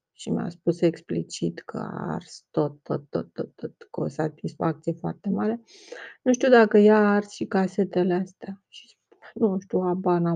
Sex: female